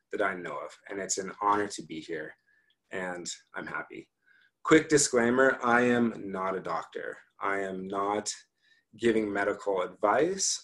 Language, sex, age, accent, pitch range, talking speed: English, male, 30-49, American, 105-130 Hz, 150 wpm